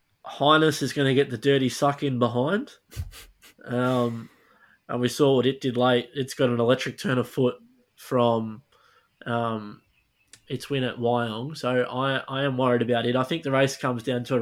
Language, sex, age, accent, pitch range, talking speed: English, male, 20-39, Australian, 115-130 Hz, 190 wpm